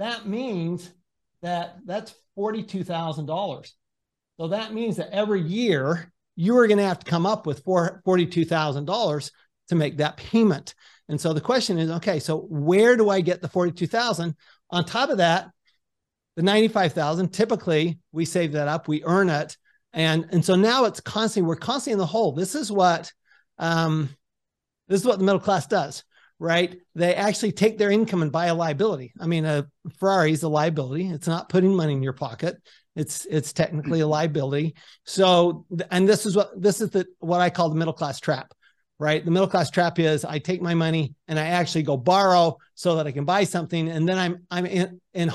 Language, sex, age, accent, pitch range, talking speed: English, male, 50-69, American, 160-195 Hz, 190 wpm